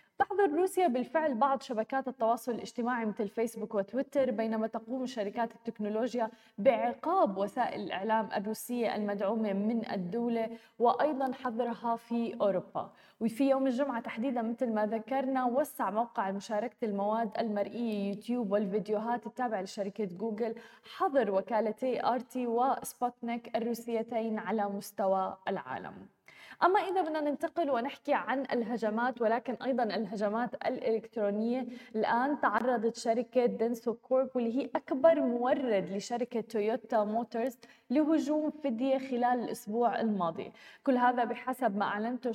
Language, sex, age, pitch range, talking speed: Arabic, female, 20-39, 220-255 Hz, 120 wpm